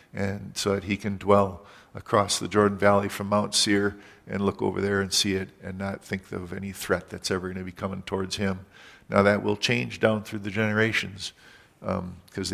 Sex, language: male, English